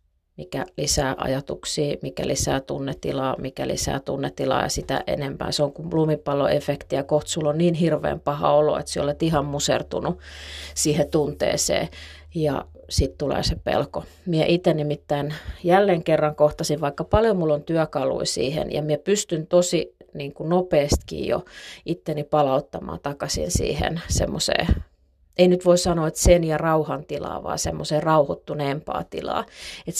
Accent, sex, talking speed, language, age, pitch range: native, female, 140 wpm, Finnish, 30-49, 145-165 Hz